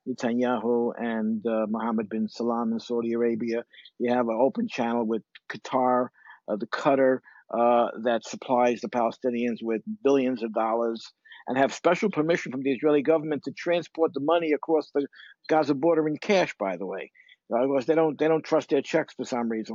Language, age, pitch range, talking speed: English, 50-69, 120-155 Hz, 180 wpm